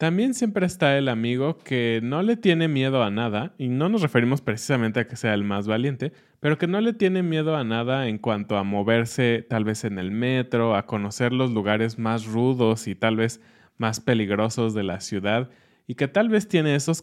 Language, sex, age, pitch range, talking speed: Spanish, male, 20-39, 110-150 Hz, 210 wpm